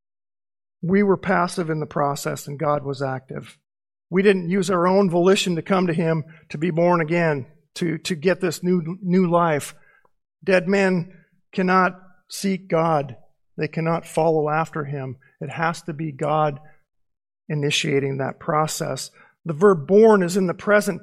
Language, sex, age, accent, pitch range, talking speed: English, male, 50-69, American, 150-185 Hz, 160 wpm